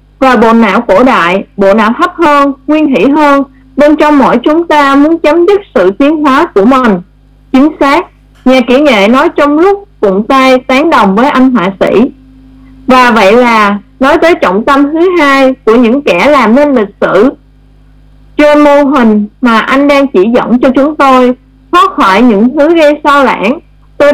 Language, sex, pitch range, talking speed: Vietnamese, female, 220-295 Hz, 190 wpm